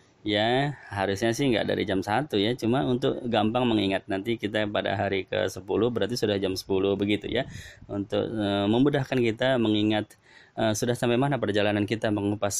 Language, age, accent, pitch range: Indonesian, 20-39, native, 100-135 Hz